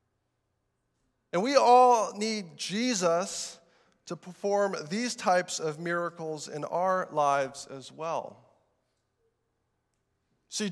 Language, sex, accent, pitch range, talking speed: English, male, American, 140-190 Hz, 95 wpm